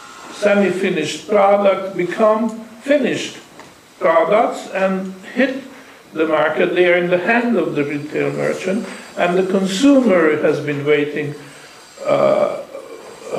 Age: 50-69